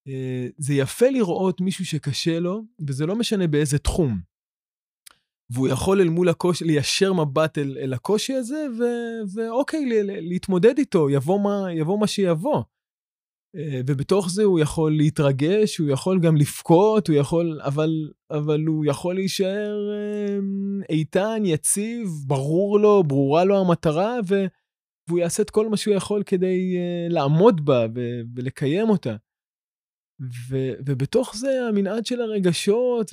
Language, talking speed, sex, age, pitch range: Hebrew, 125 wpm, male, 20-39, 145-200 Hz